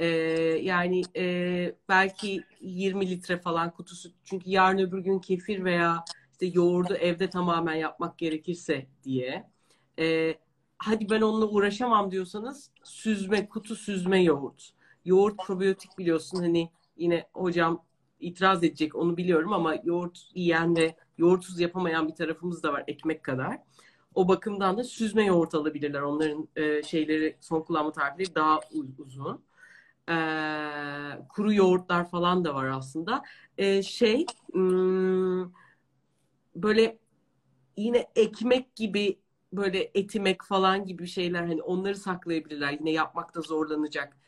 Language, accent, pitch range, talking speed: Turkish, native, 155-190 Hz, 125 wpm